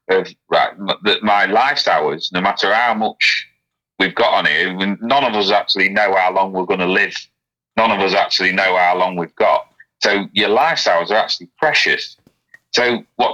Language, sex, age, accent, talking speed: English, male, 30-49, British, 190 wpm